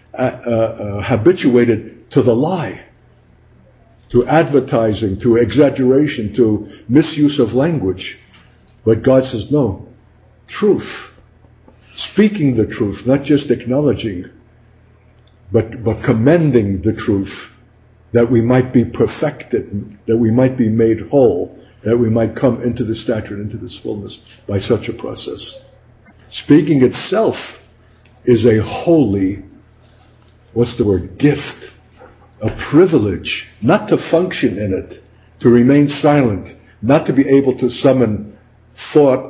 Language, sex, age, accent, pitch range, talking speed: English, male, 60-79, American, 110-135 Hz, 125 wpm